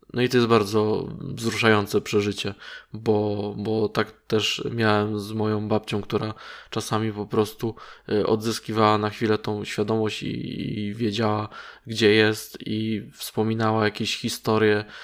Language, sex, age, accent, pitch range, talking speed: Polish, male, 20-39, native, 105-115 Hz, 130 wpm